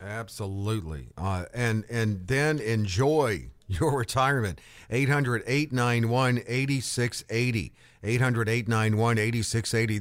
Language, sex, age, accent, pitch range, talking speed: English, male, 50-69, American, 110-145 Hz, 60 wpm